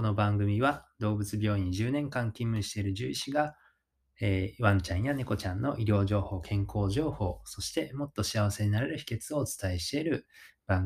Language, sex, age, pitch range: Japanese, male, 20-39, 95-110 Hz